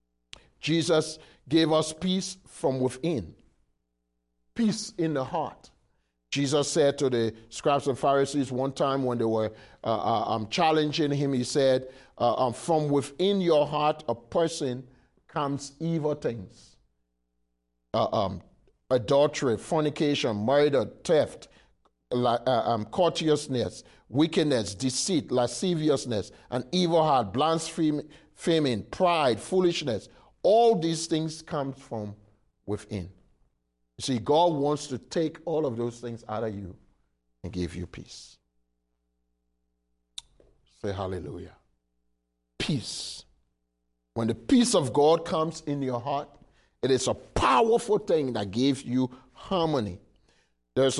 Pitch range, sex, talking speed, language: 105-150 Hz, male, 120 wpm, English